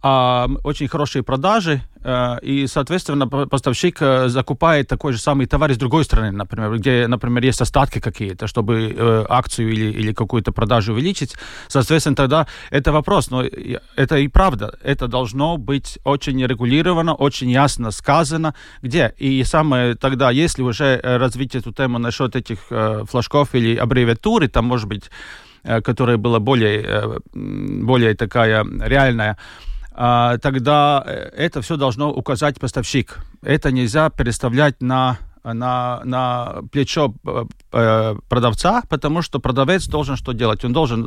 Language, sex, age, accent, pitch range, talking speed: Russian, male, 40-59, native, 120-145 Hz, 125 wpm